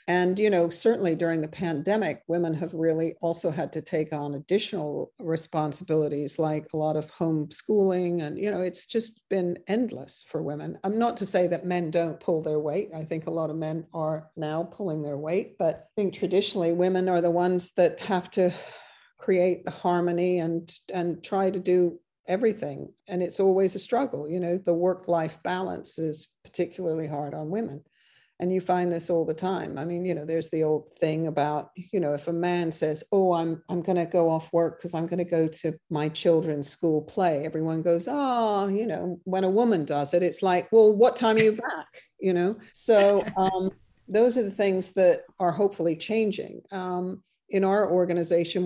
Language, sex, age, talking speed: English, female, 50-69, 200 wpm